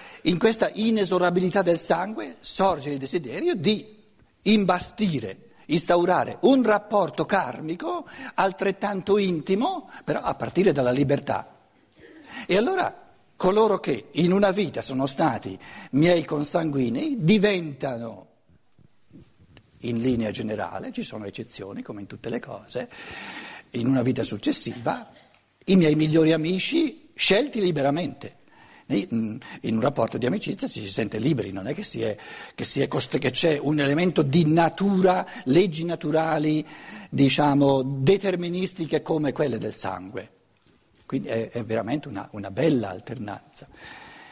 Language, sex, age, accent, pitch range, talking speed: Italian, male, 60-79, native, 130-190 Hz, 120 wpm